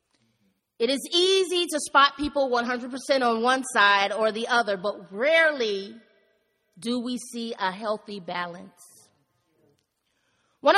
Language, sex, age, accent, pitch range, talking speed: English, female, 30-49, American, 195-270 Hz, 120 wpm